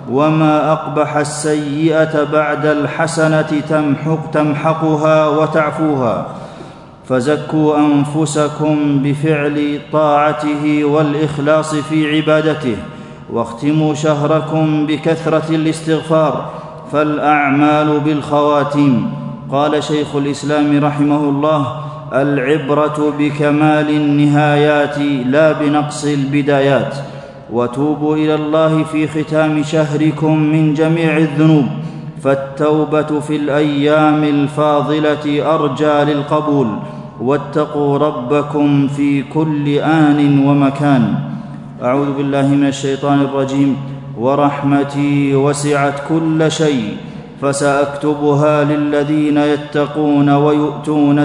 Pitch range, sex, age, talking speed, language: 140-155 Hz, male, 40-59, 75 wpm, Arabic